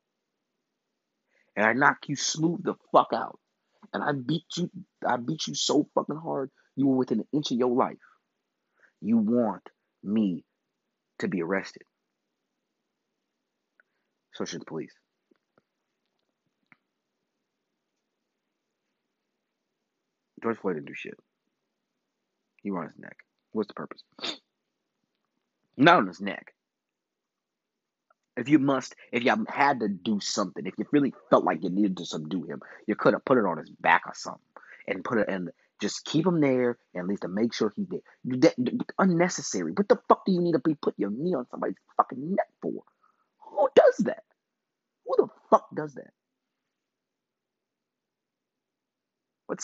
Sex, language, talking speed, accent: male, English, 150 wpm, American